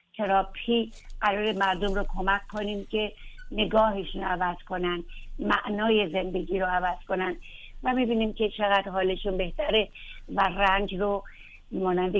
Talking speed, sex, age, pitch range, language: 125 wpm, female, 60-79, 190-210 Hz, Persian